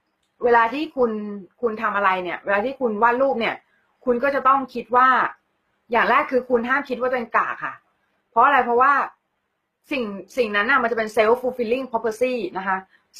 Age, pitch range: 20-39, 215-270 Hz